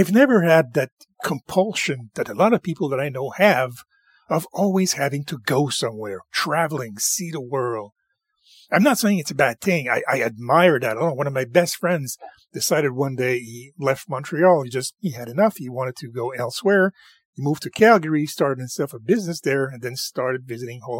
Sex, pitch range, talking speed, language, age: male, 130-195 Hz, 200 wpm, English, 40-59